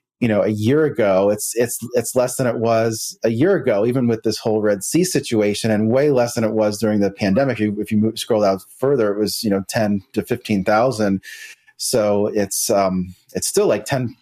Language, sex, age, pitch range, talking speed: English, male, 30-49, 100-115 Hz, 215 wpm